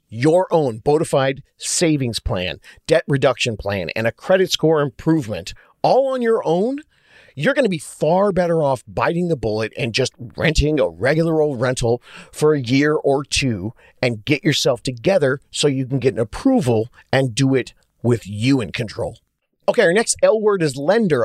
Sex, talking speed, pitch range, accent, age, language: male, 180 wpm, 120-155 Hz, American, 40-59, English